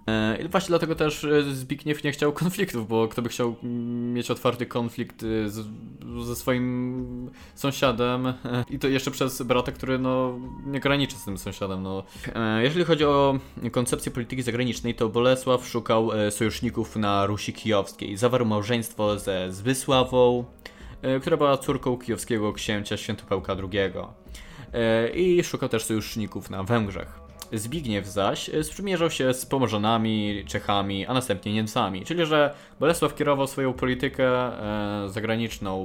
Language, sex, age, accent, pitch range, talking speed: Polish, male, 20-39, native, 105-135 Hz, 125 wpm